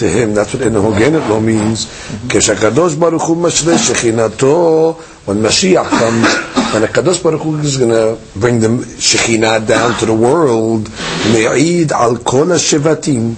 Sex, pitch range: male, 115-150 Hz